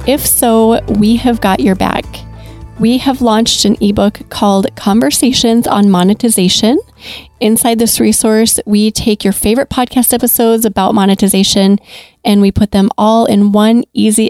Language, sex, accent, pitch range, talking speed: English, female, American, 200-235 Hz, 145 wpm